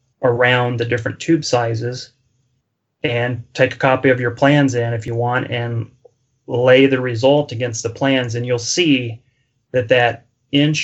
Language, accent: English, American